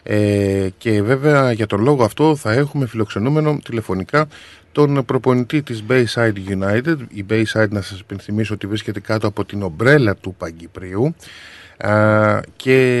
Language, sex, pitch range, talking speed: Greek, male, 100-125 Hz, 145 wpm